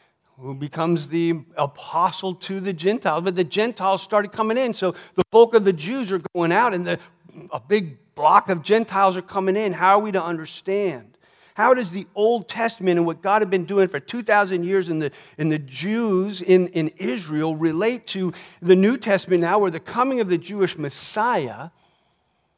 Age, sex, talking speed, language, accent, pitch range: 50-69, male, 190 wpm, English, American, 160-195 Hz